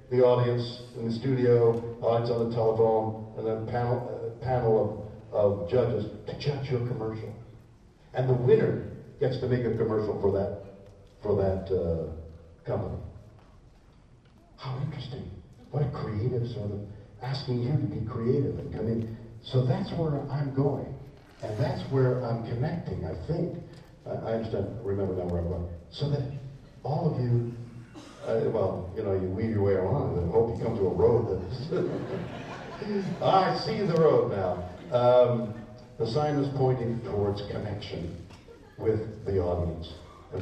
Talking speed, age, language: 165 wpm, 50-69, English